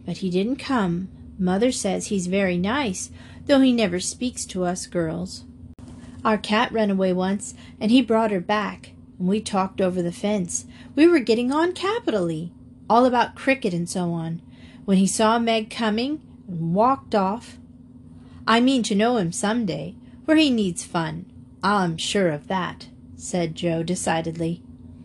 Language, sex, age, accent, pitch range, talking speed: English, female, 40-59, American, 180-240 Hz, 165 wpm